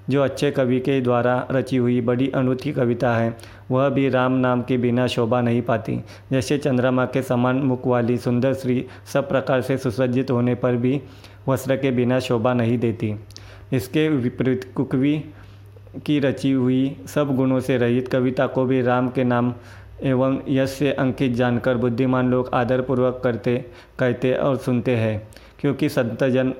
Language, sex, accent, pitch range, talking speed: Hindi, male, native, 120-130 Hz, 160 wpm